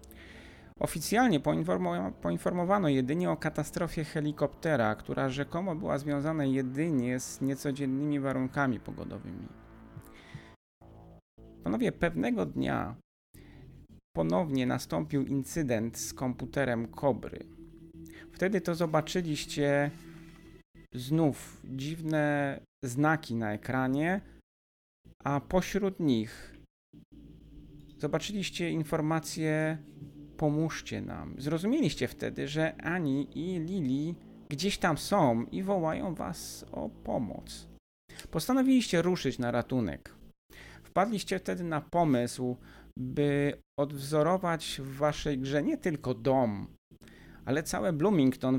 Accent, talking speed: native, 90 wpm